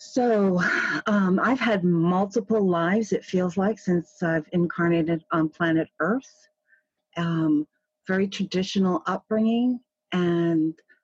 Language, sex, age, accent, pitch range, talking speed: English, female, 40-59, American, 155-205 Hz, 110 wpm